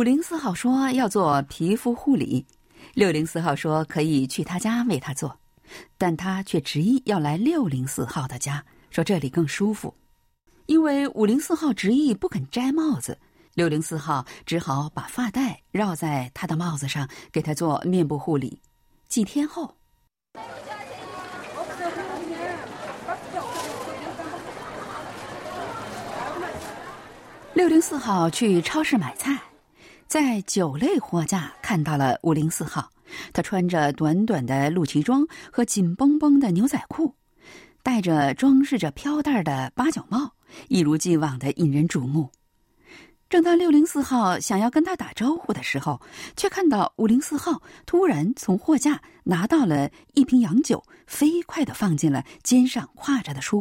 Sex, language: female, Chinese